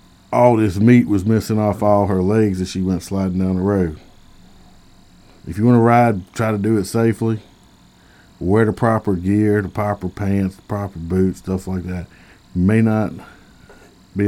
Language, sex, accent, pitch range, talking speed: English, male, American, 95-105 Hz, 175 wpm